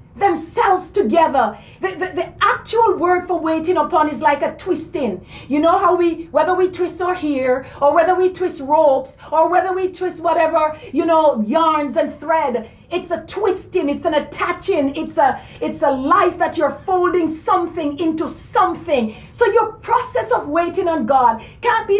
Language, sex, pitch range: English, female, 275-360 Hz